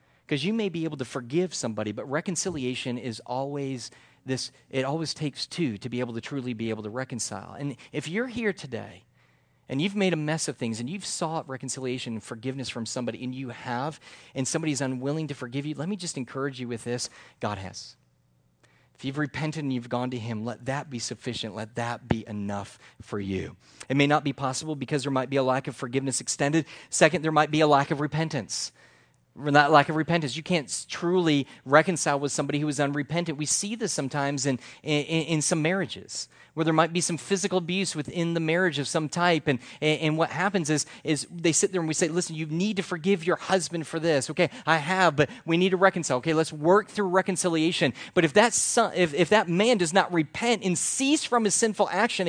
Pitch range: 130-175 Hz